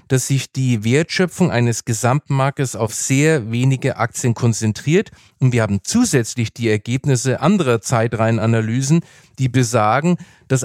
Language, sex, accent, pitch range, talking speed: German, male, German, 120-155 Hz, 125 wpm